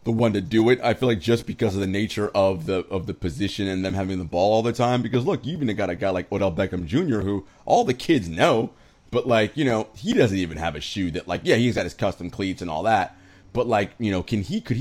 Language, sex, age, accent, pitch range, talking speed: English, male, 30-49, American, 90-120 Hz, 285 wpm